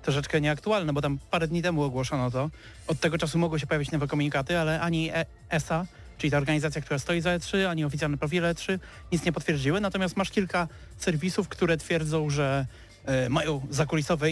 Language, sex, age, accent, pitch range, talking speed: Polish, male, 30-49, native, 130-165 Hz, 190 wpm